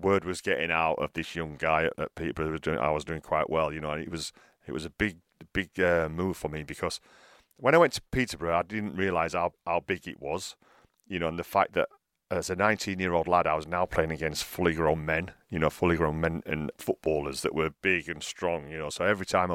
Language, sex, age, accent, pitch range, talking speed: English, male, 40-59, British, 80-95 Hz, 240 wpm